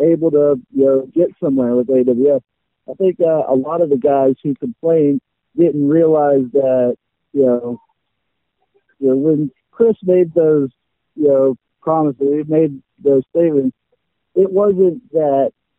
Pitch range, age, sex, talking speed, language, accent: 130-180 Hz, 50-69, male, 150 wpm, English, American